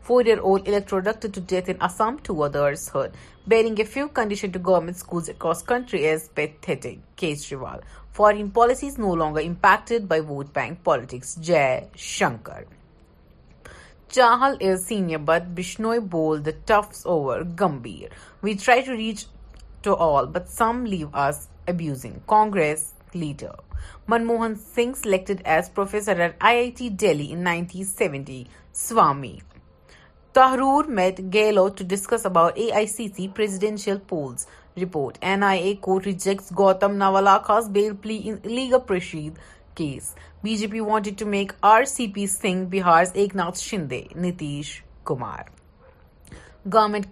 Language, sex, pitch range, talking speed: Urdu, female, 165-220 Hz, 125 wpm